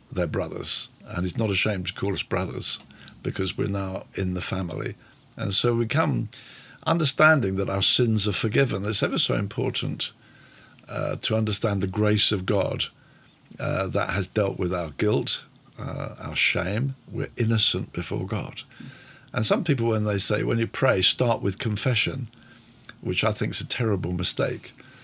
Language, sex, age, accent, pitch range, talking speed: English, male, 50-69, British, 95-125 Hz, 170 wpm